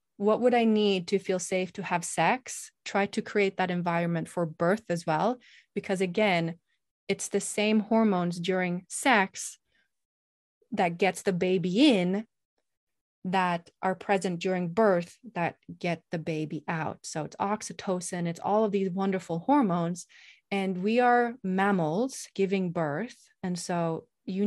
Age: 20-39